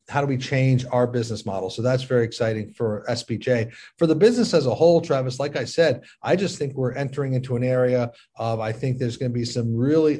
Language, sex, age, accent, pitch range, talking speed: English, male, 40-59, American, 115-140 Hz, 235 wpm